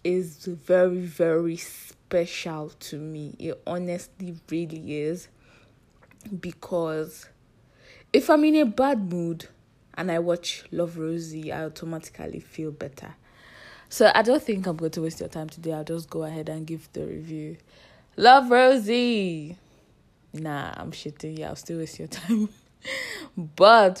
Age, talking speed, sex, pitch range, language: 10-29, 140 wpm, female, 155-185 Hz, English